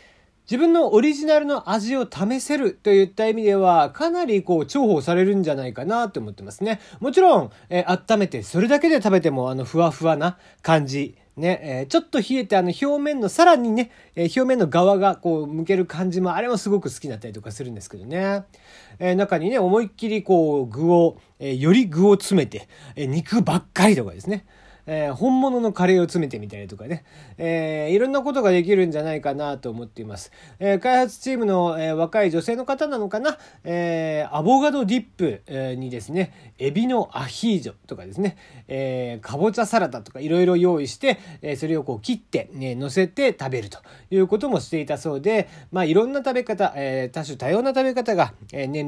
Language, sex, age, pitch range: Japanese, male, 40-59, 145-220 Hz